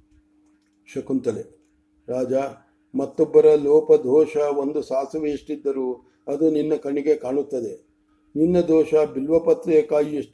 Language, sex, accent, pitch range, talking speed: English, male, Indian, 130-155 Hz, 95 wpm